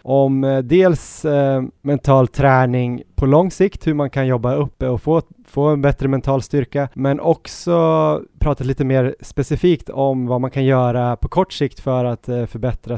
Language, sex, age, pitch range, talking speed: Swedish, male, 20-39, 125-145 Hz, 175 wpm